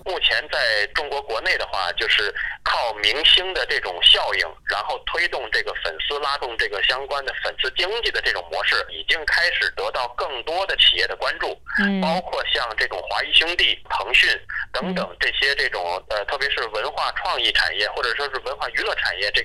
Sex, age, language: male, 30-49, Chinese